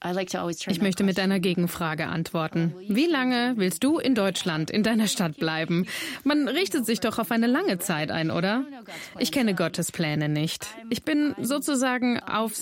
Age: 30-49